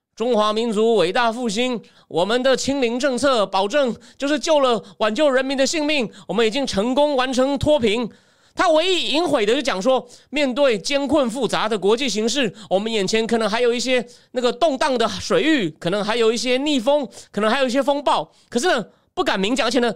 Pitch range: 220-285 Hz